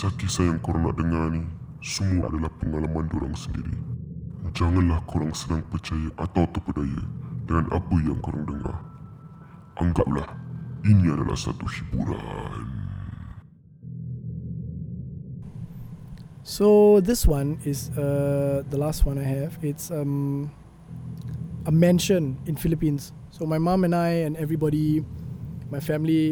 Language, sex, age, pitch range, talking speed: Malay, male, 20-39, 135-160 Hz, 120 wpm